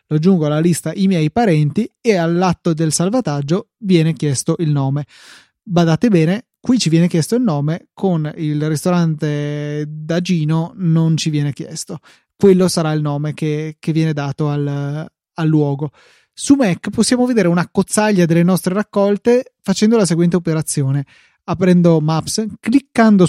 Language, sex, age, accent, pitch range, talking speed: Italian, male, 20-39, native, 155-195 Hz, 150 wpm